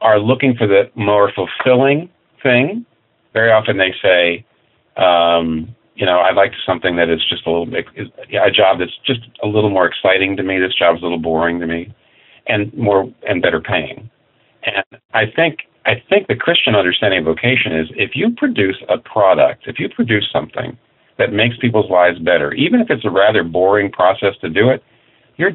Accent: American